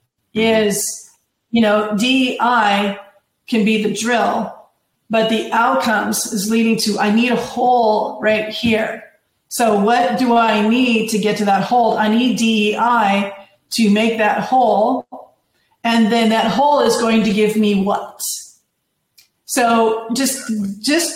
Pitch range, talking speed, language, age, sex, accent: 210-240 Hz, 140 wpm, English, 40-59, female, American